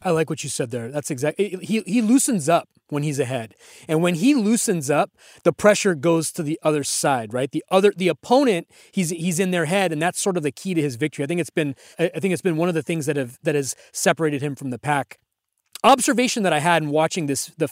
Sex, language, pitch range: male, English, 150-195 Hz